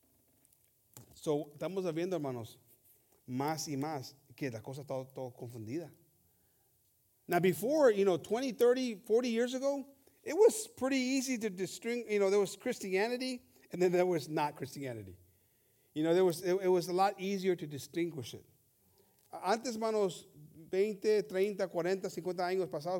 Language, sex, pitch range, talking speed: English, male, 135-200 Hz, 160 wpm